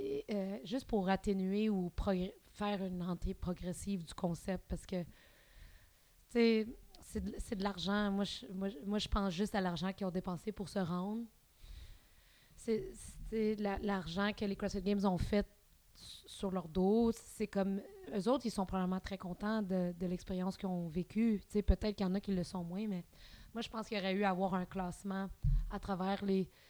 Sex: female